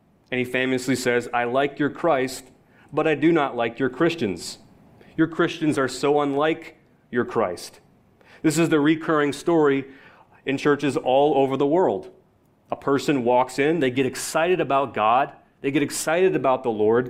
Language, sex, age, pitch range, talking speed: English, male, 30-49, 125-150 Hz, 170 wpm